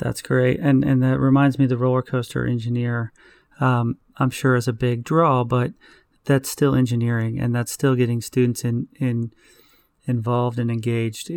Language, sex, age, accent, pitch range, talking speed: English, male, 30-49, American, 115-130 Hz, 175 wpm